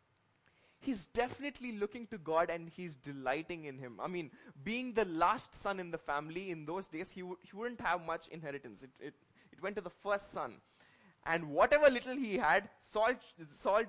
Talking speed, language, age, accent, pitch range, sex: 180 wpm, English, 20-39, Indian, 150-200 Hz, male